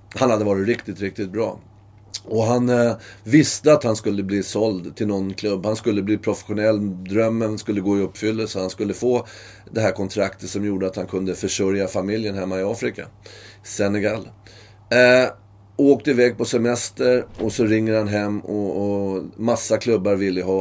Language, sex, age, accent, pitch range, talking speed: English, male, 30-49, Swedish, 95-115 Hz, 180 wpm